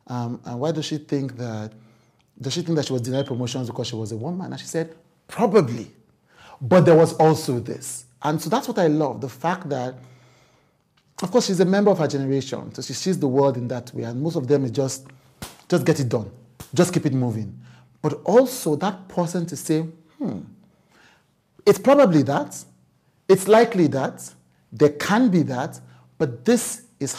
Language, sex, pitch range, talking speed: English, male, 120-155 Hz, 195 wpm